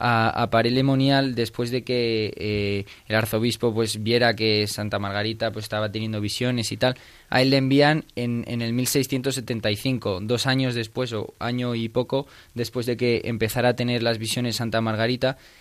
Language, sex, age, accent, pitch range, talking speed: Spanish, male, 20-39, Spanish, 110-130 Hz, 175 wpm